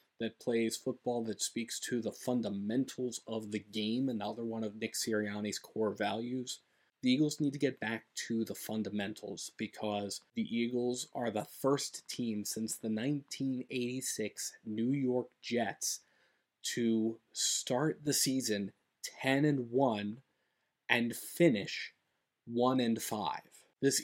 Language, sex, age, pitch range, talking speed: English, male, 30-49, 110-130 Hz, 125 wpm